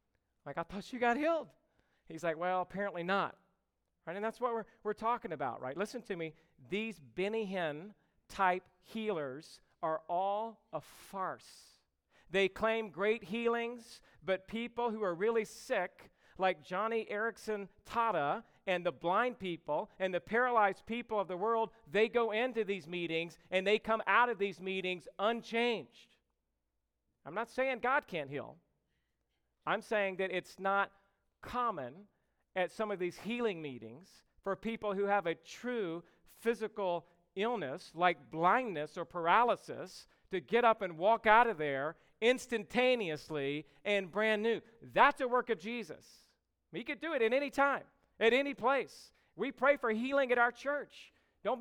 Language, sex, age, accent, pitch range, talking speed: English, male, 40-59, American, 180-235 Hz, 160 wpm